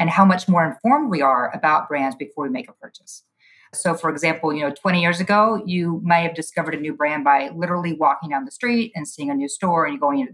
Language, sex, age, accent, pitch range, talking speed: English, female, 30-49, American, 150-200 Hz, 255 wpm